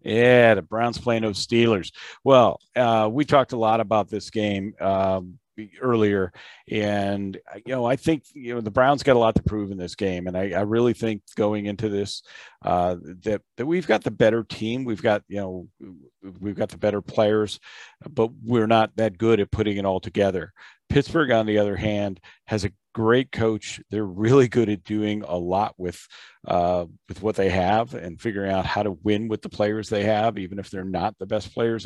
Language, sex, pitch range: English, male, 95-115 Hz